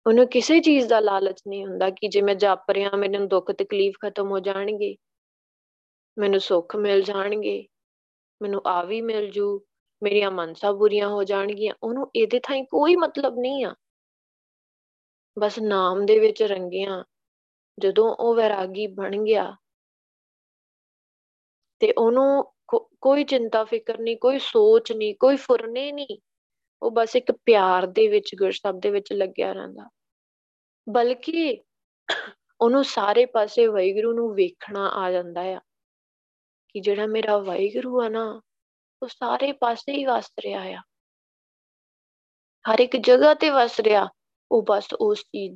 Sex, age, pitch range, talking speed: female, 20-39, 195-255 Hz, 130 wpm